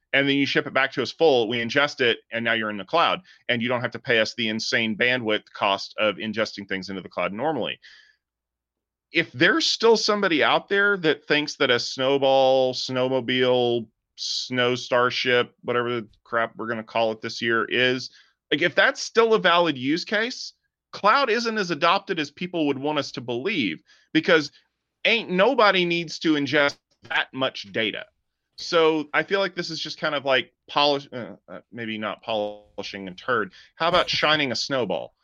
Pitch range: 115-160 Hz